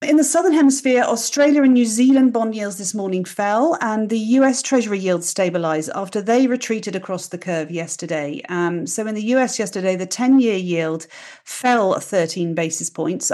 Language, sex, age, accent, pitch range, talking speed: English, female, 40-59, British, 180-230 Hz, 175 wpm